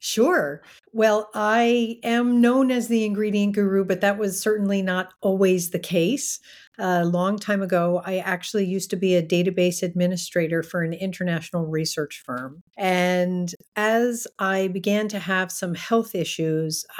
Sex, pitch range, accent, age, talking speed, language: female, 165-200 Hz, American, 50-69, 150 wpm, English